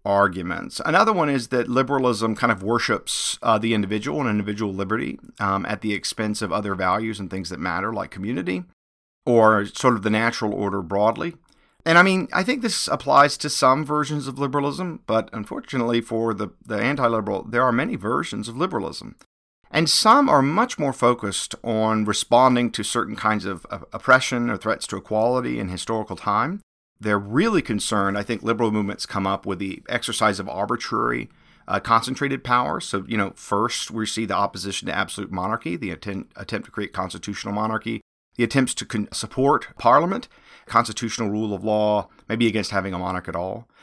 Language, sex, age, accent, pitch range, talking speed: English, male, 50-69, American, 100-125 Hz, 180 wpm